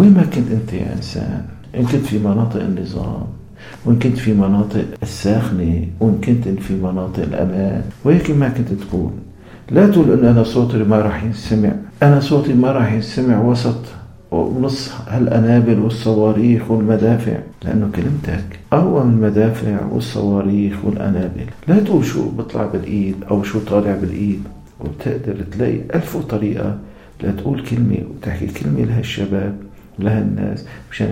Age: 50-69